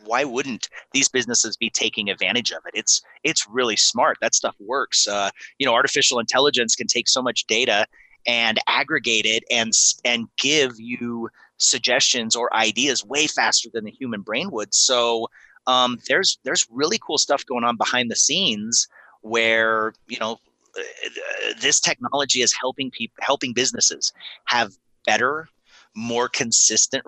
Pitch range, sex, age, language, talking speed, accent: 115-135 Hz, male, 30-49, English, 155 wpm, American